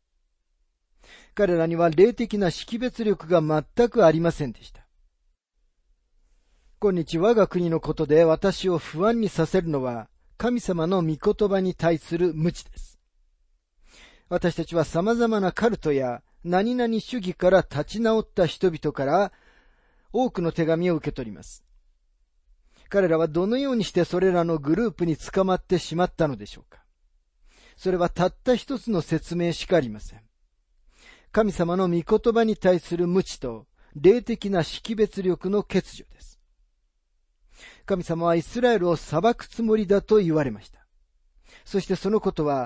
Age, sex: 40-59, male